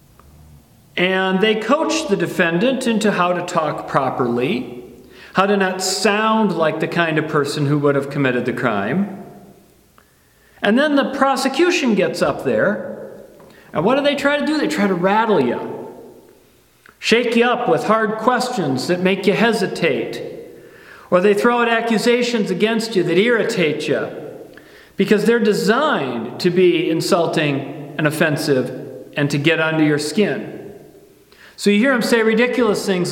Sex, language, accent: male, English, American